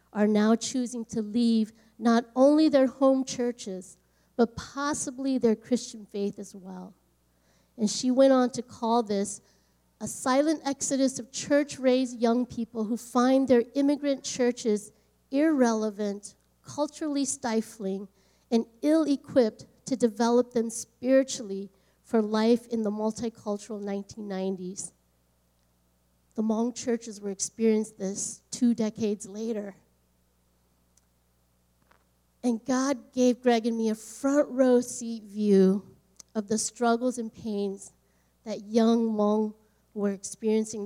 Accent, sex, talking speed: American, female, 120 wpm